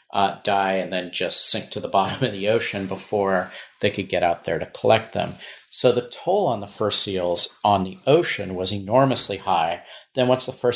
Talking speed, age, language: 210 wpm, 40-59, English